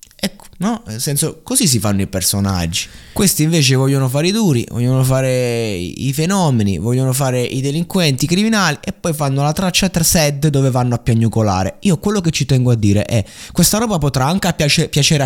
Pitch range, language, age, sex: 105-150 Hz, Italian, 20-39, male